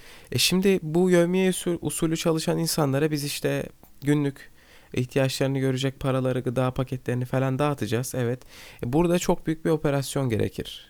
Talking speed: 130 wpm